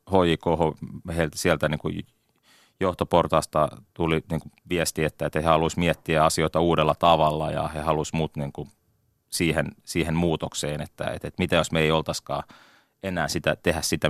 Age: 30-49